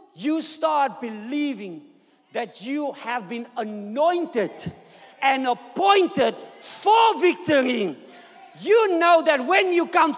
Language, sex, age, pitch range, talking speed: English, male, 50-69, 185-295 Hz, 105 wpm